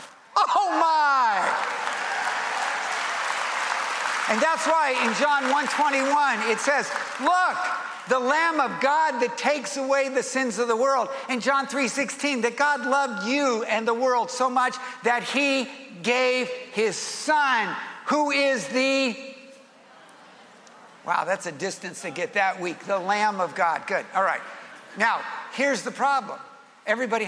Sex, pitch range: male, 210-275 Hz